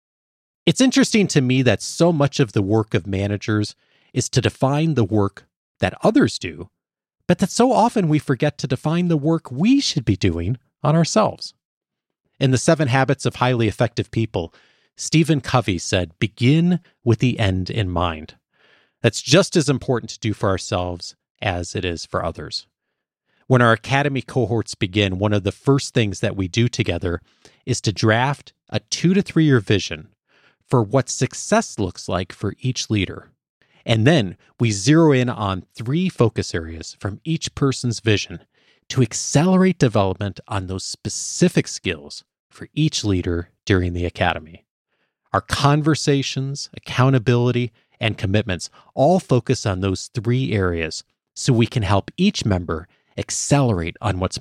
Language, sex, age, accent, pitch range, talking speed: English, male, 40-59, American, 100-145 Hz, 160 wpm